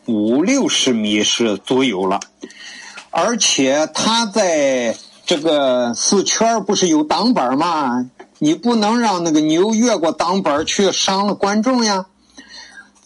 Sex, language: male, Chinese